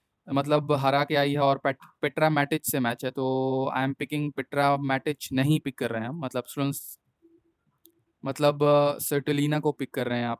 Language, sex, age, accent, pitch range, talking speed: Hindi, male, 20-39, native, 135-150 Hz, 185 wpm